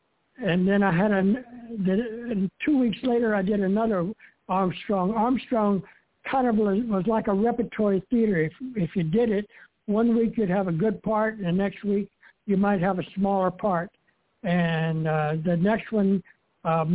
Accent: American